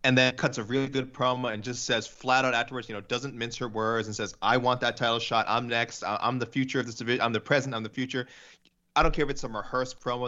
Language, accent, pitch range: English, American, 105-130 Hz